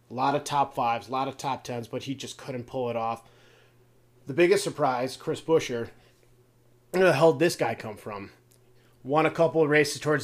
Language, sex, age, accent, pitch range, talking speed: English, male, 30-49, American, 120-145 Hz, 210 wpm